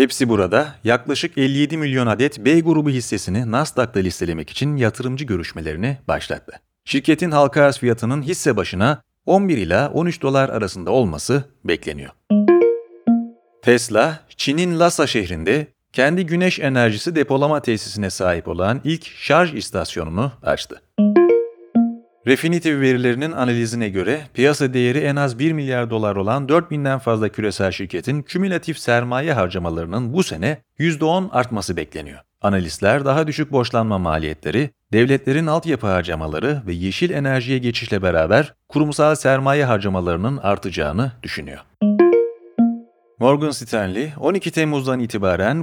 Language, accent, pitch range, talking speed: Turkish, native, 105-150 Hz, 120 wpm